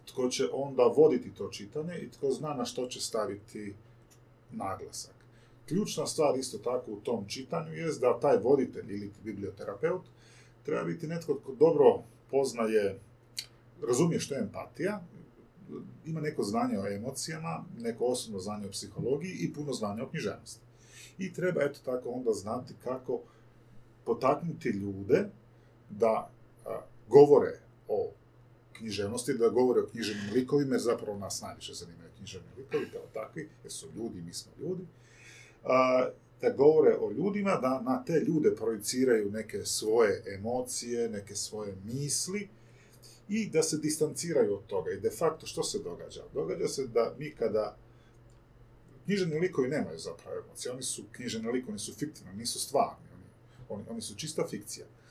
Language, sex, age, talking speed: Croatian, male, 40-59, 145 wpm